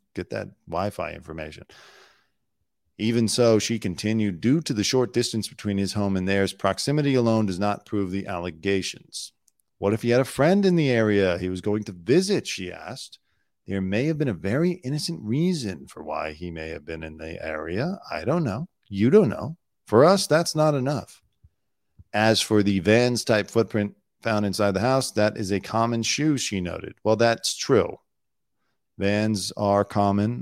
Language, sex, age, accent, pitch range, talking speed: English, male, 40-59, American, 95-130 Hz, 180 wpm